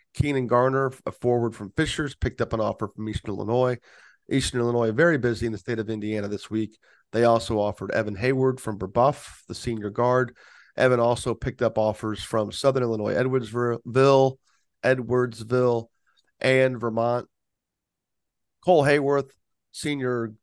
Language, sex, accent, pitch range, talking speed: English, male, American, 110-130 Hz, 145 wpm